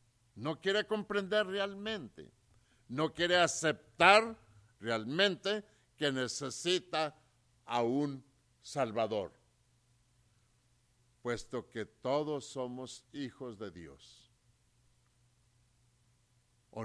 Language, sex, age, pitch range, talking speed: English, male, 60-79, 120-160 Hz, 75 wpm